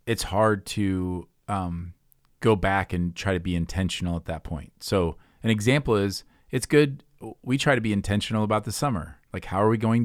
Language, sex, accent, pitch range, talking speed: English, male, American, 90-110 Hz, 195 wpm